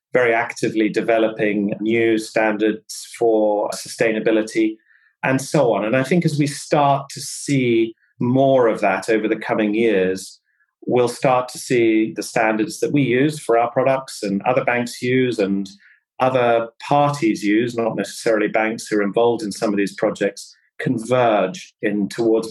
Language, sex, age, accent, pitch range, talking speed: English, male, 30-49, British, 105-130 Hz, 155 wpm